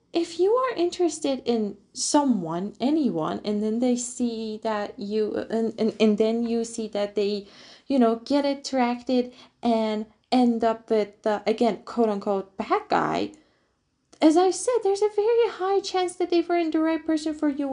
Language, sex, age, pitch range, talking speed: English, female, 20-39, 210-270 Hz, 175 wpm